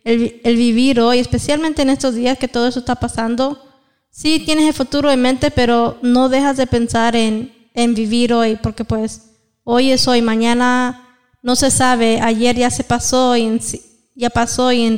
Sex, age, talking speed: female, 20-39, 190 wpm